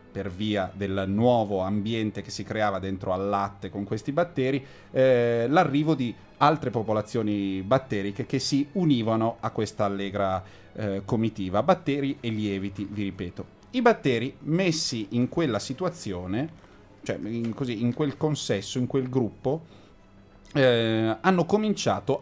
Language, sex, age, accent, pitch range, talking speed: Italian, male, 30-49, native, 100-135 Hz, 135 wpm